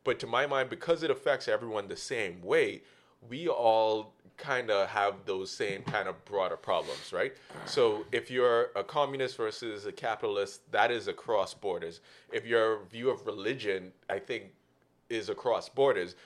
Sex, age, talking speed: male, 30-49, 165 wpm